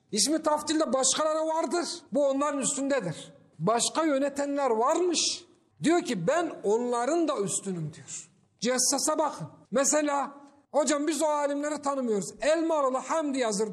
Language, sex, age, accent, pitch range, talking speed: Turkish, male, 50-69, native, 220-300 Hz, 120 wpm